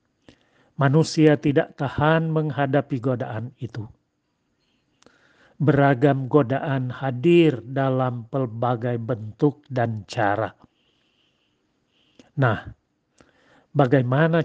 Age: 40-59